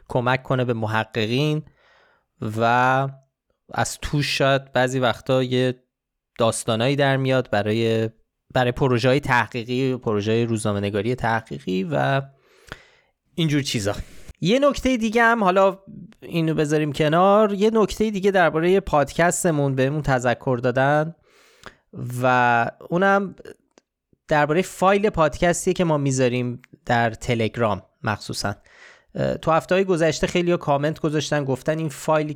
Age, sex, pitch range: 20-39, male, 115-155 Hz